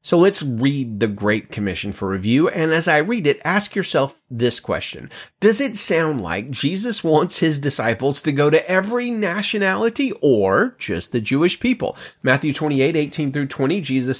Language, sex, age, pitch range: English, male, 30-49, 125-180 Hz